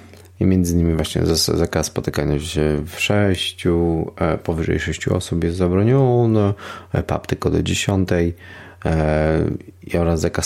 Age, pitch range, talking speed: 30-49, 80-95 Hz, 125 wpm